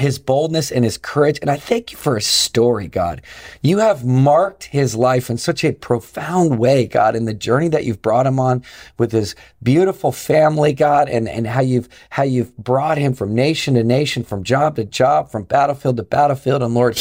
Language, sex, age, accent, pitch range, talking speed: English, male, 40-59, American, 125-160 Hz, 210 wpm